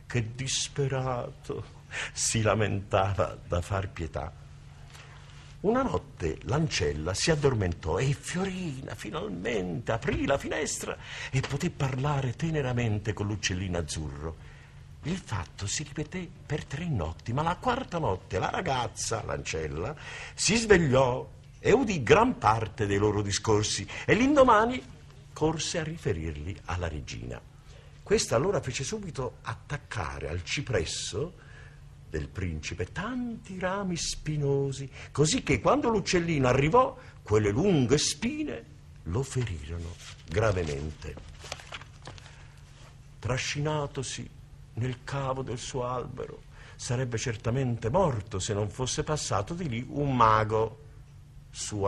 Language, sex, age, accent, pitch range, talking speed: Italian, male, 50-69, native, 100-145 Hz, 110 wpm